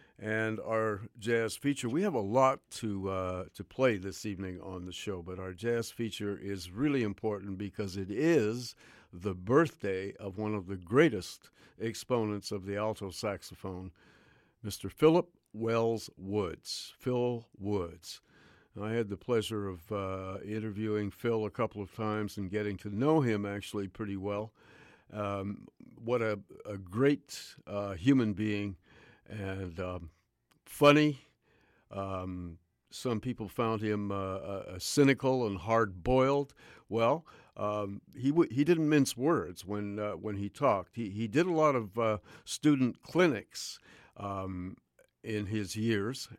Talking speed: 145 wpm